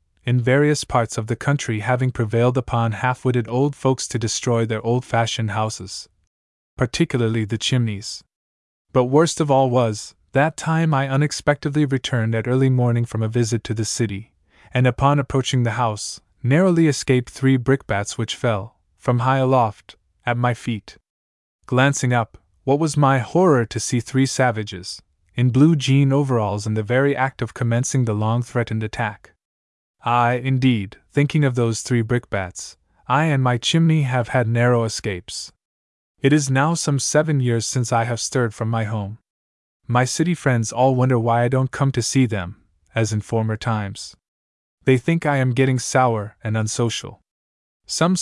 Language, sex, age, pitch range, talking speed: English, male, 20-39, 110-135 Hz, 170 wpm